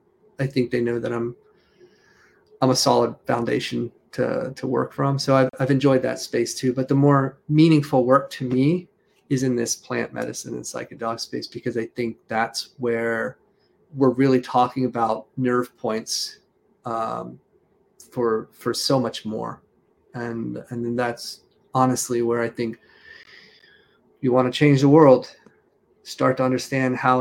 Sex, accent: male, American